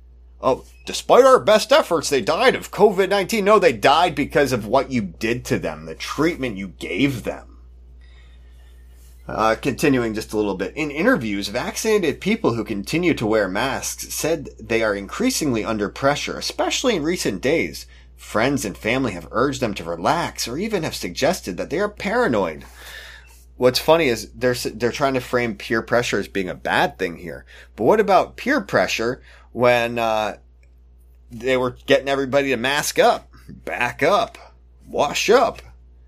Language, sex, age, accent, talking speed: English, male, 30-49, American, 165 wpm